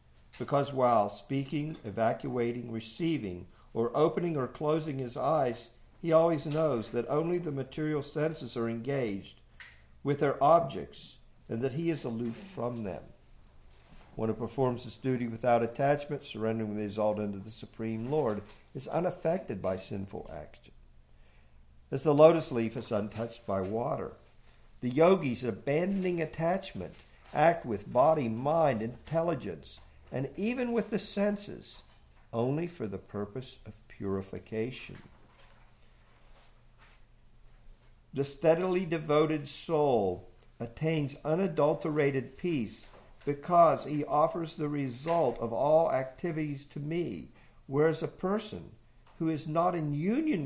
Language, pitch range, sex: English, 110-160 Hz, male